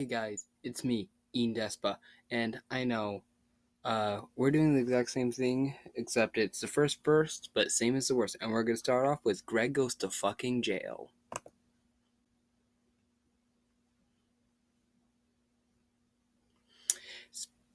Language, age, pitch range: English, 20-39, 110-140 Hz